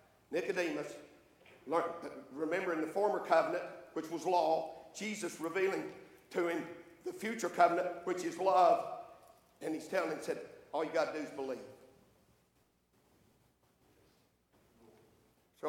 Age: 50-69